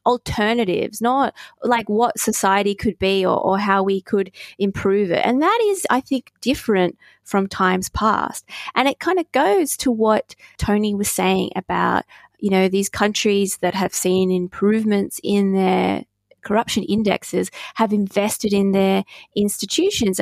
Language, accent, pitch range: English, Australian, 195-235 Hz